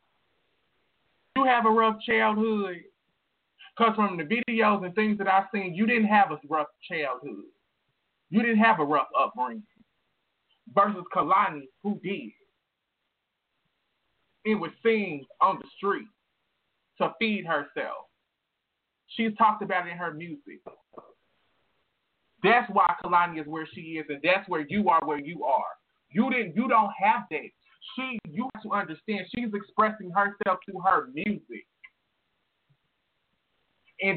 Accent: American